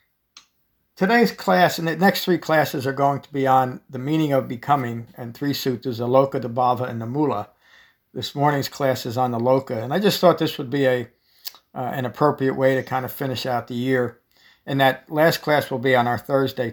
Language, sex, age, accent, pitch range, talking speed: English, male, 60-79, American, 120-145 Hz, 220 wpm